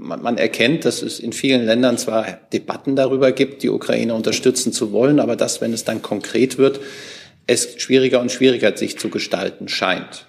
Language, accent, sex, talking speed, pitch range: German, German, male, 180 wpm, 110-130 Hz